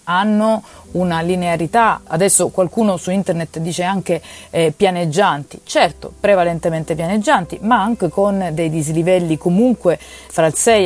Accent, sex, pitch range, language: native, female, 165-200 Hz, Italian